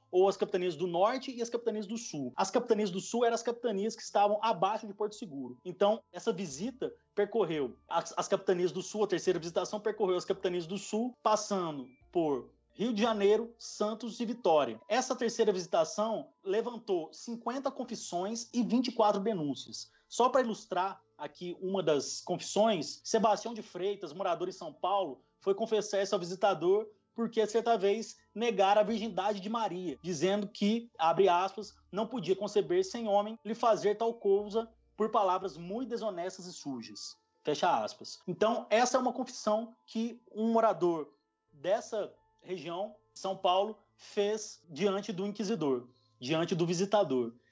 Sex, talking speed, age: male, 155 wpm, 30-49